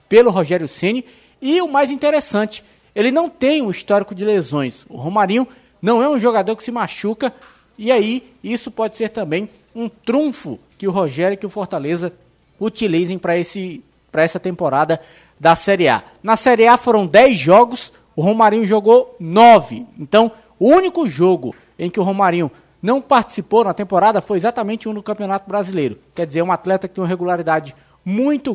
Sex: male